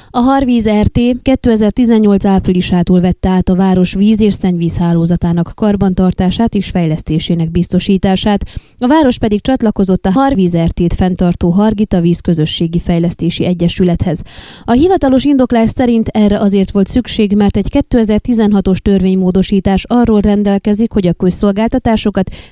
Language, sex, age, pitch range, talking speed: Hungarian, female, 20-39, 185-225 Hz, 125 wpm